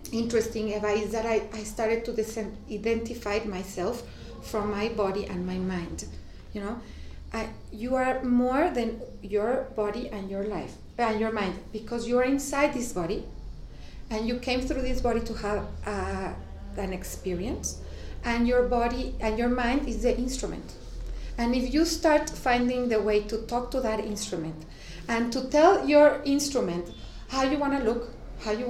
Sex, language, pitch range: female, English, 210-275 Hz